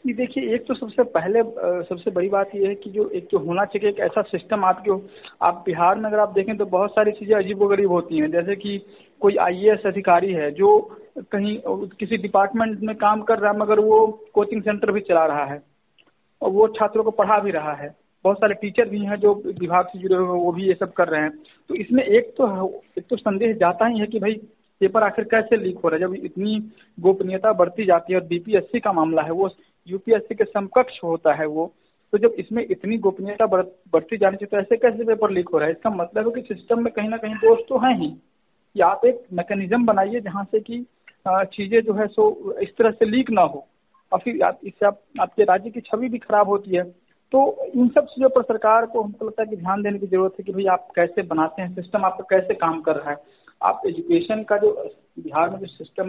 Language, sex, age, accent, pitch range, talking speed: Hindi, male, 50-69, native, 185-225 Hz, 230 wpm